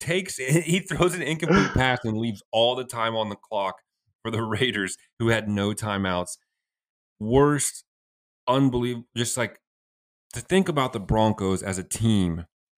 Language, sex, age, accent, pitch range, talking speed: English, male, 30-49, American, 95-125 Hz, 160 wpm